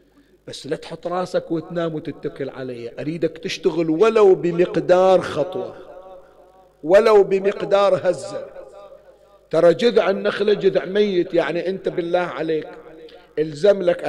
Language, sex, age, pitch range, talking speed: Arabic, male, 40-59, 160-190 Hz, 105 wpm